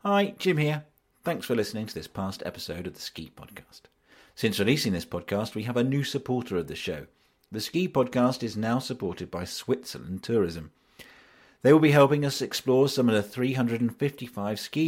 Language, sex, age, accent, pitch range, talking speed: English, male, 40-59, British, 95-125 Hz, 185 wpm